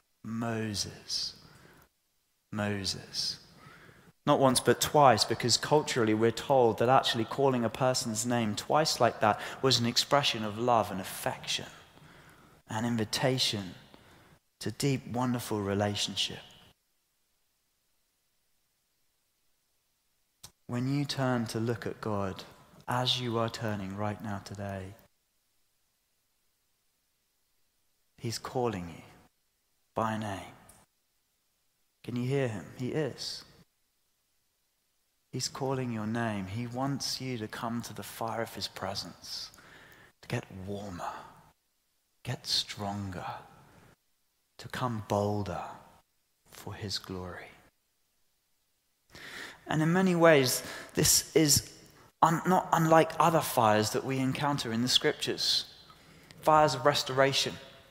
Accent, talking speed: British, 105 wpm